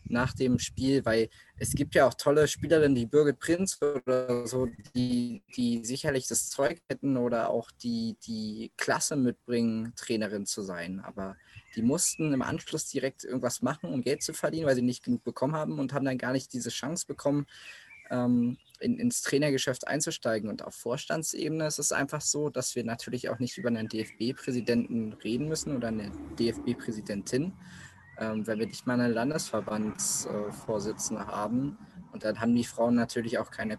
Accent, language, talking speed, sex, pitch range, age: German, German, 170 wpm, male, 115-140 Hz, 20-39